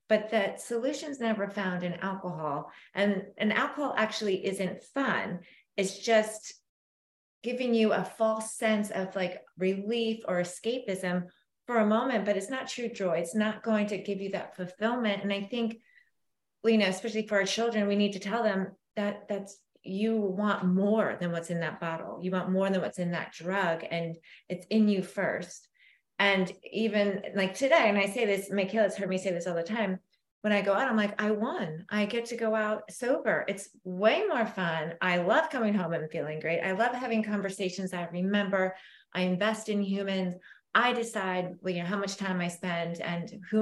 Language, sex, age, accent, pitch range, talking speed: English, female, 30-49, American, 180-220 Hz, 190 wpm